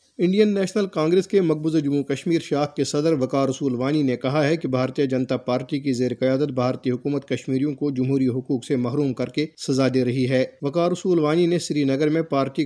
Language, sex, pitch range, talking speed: Urdu, male, 130-155 Hz, 205 wpm